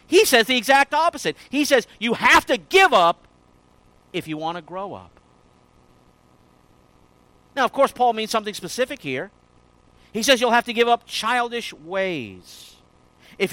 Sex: male